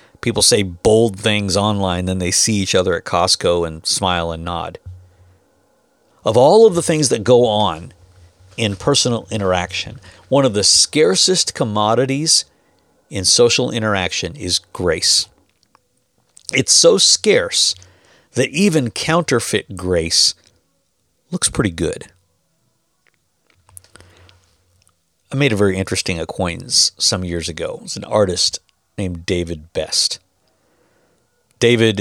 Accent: American